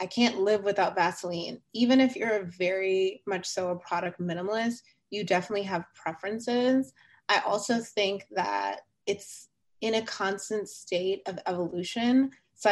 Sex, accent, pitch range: female, American, 175-205 Hz